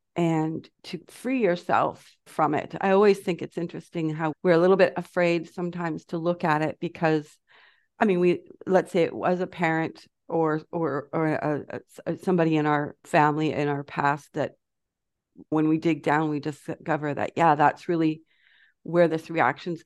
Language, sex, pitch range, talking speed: English, female, 160-190 Hz, 180 wpm